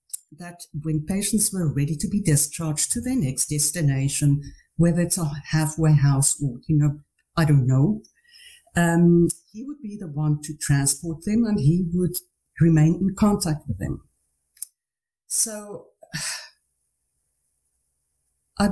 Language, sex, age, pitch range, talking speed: English, female, 60-79, 150-210 Hz, 135 wpm